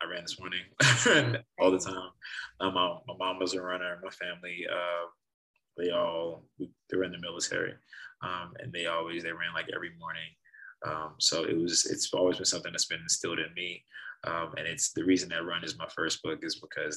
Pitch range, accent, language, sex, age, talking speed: 85-100 Hz, American, English, male, 20-39, 205 wpm